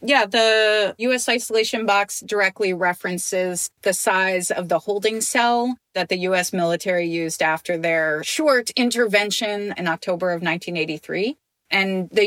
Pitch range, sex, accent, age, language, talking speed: 185-230 Hz, female, American, 30-49, English, 125 wpm